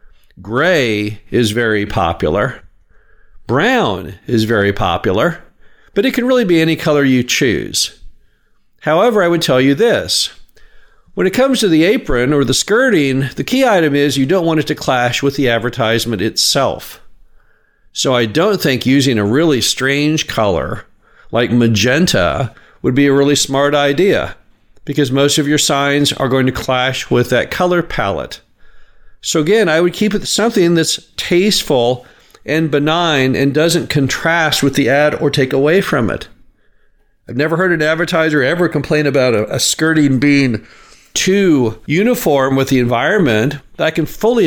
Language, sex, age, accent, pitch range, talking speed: English, male, 50-69, American, 120-160 Hz, 160 wpm